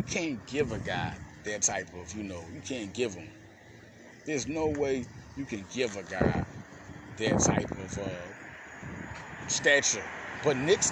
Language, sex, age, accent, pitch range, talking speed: English, male, 30-49, American, 120-160 Hz, 155 wpm